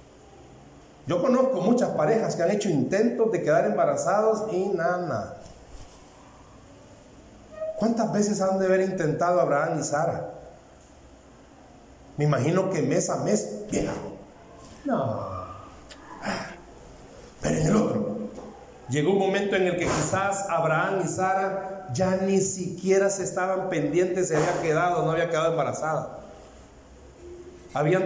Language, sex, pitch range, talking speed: Spanish, male, 145-195 Hz, 125 wpm